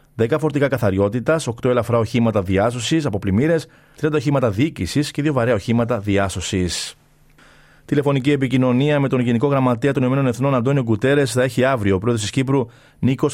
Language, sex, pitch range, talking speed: Greek, male, 110-140 Hz, 160 wpm